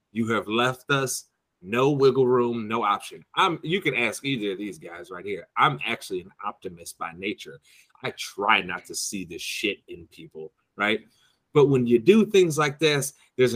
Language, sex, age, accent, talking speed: English, male, 30-49, American, 190 wpm